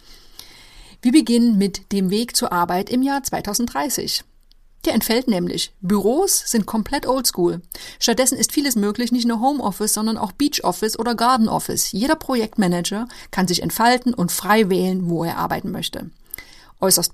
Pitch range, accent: 190-255 Hz, German